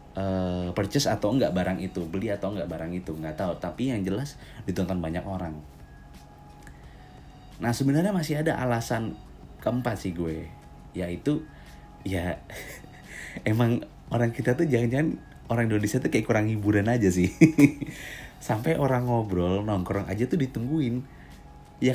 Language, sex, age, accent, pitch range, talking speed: Indonesian, male, 30-49, native, 85-120 Hz, 135 wpm